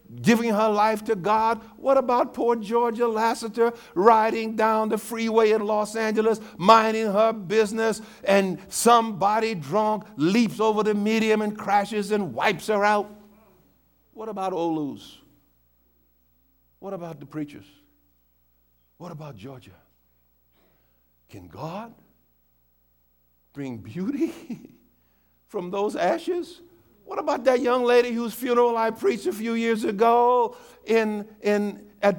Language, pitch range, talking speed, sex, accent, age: English, 155-220 Hz, 125 wpm, male, American, 60-79